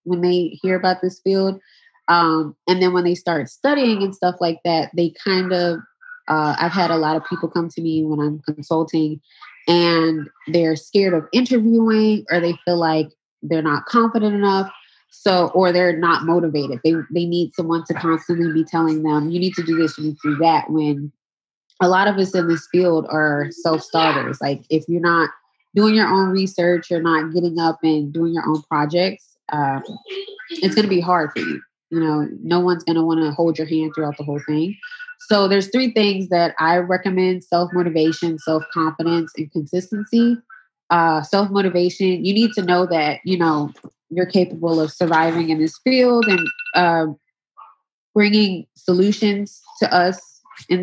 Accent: American